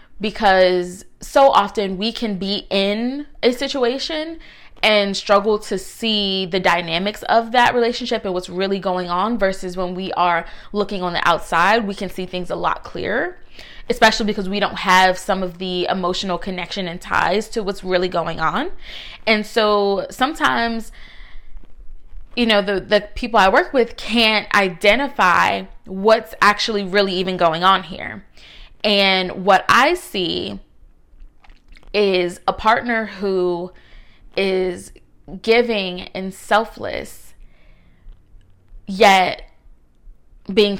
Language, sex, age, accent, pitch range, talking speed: English, female, 20-39, American, 180-220 Hz, 130 wpm